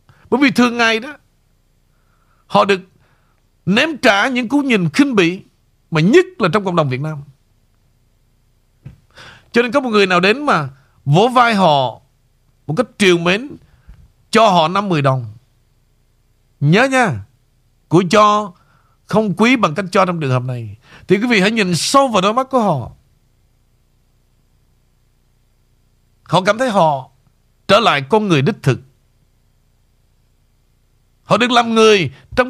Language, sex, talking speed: Vietnamese, male, 150 wpm